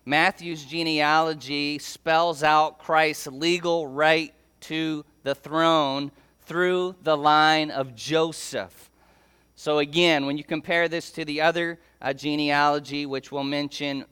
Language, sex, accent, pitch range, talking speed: English, male, American, 140-160 Hz, 125 wpm